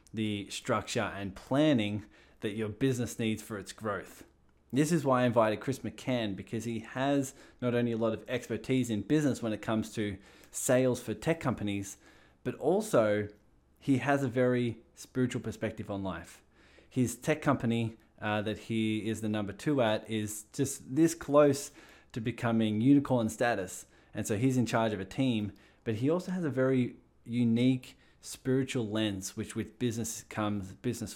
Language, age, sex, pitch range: English, 20-39, male, 105-125 Hz